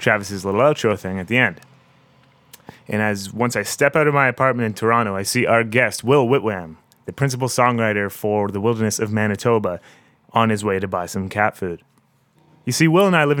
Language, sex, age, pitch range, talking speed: English, male, 30-49, 100-130 Hz, 205 wpm